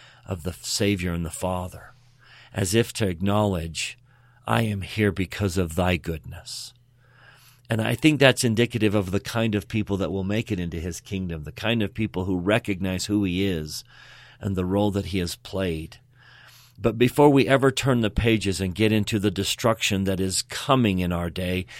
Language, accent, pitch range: English, American, 95-120 Hz